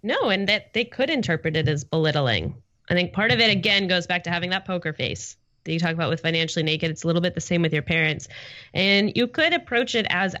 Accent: American